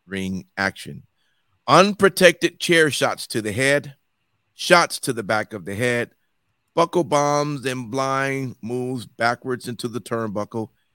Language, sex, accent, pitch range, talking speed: English, male, American, 110-135 Hz, 130 wpm